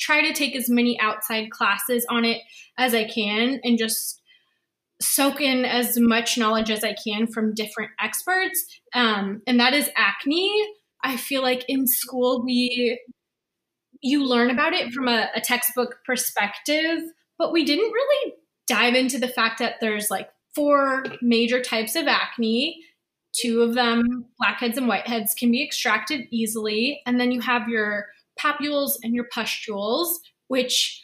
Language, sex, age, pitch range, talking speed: English, female, 20-39, 220-260 Hz, 155 wpm